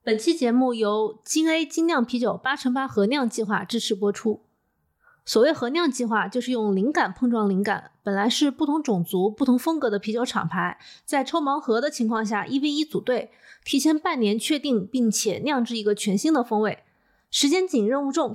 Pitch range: 215-295 Hz